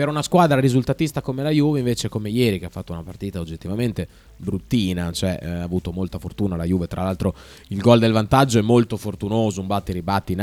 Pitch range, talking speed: 95-125 Hz, 215 wpm